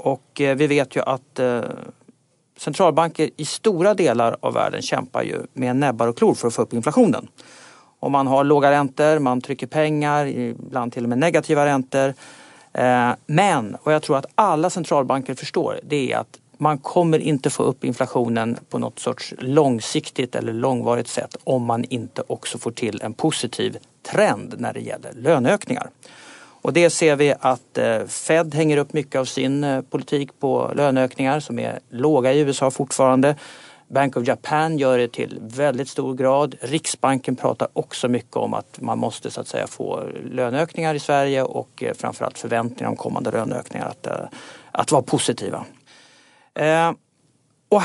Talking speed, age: 160 wpm, 50-69